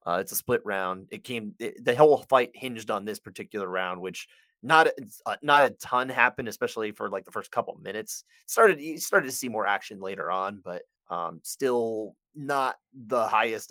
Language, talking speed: English, 195 wpm